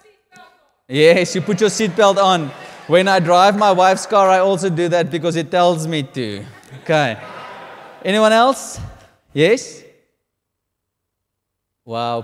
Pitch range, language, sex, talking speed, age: 115-175 Hz, English, male, 125 wpm, 20-39